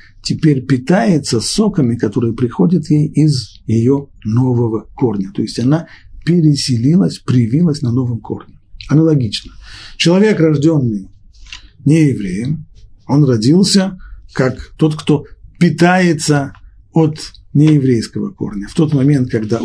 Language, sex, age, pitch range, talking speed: Russian, male, 50-69, 110-155 Hz, 105 wpm